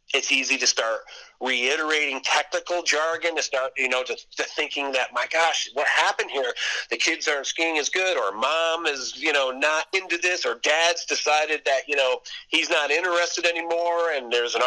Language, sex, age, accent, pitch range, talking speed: English, male, 50-69, American, 140-170 Hz, 190 wpm